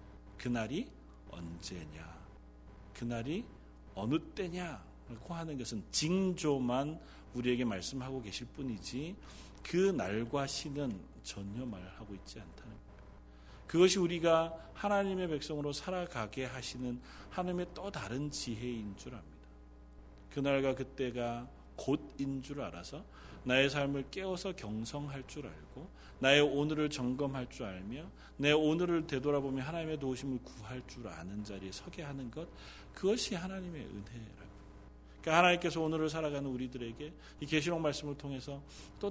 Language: Korean